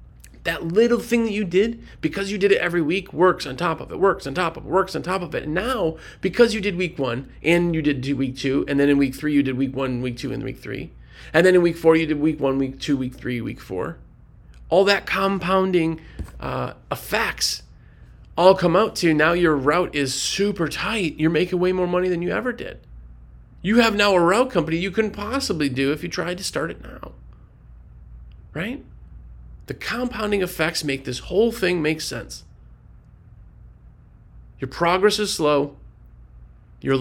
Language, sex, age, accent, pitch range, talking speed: English, male, 40-59, American, 135-190 Hz, 205 wpm